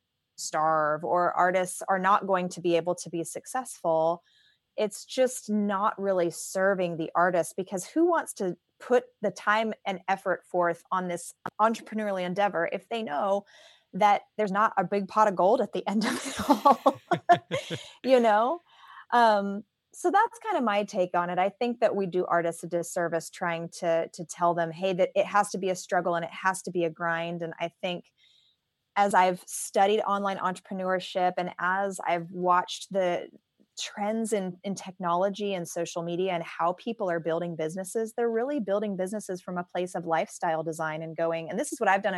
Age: 20-39